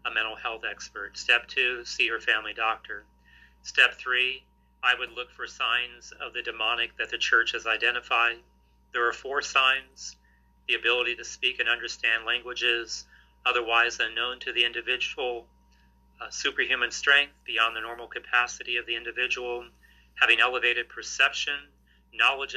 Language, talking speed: English, 145 wpm